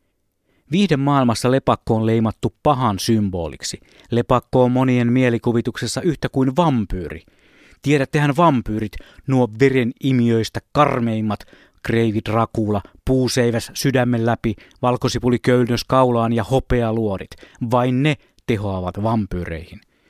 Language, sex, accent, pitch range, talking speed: Finnish, male, native, 105-130 Hz, 100 wpm